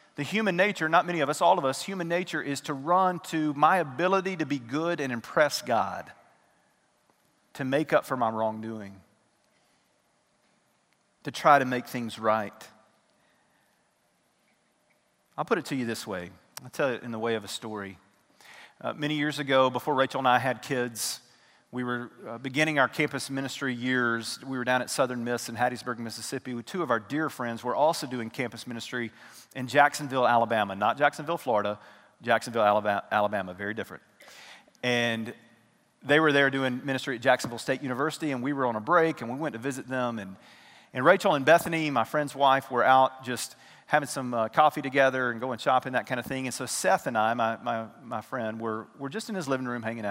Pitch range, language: 115-145 Hz, English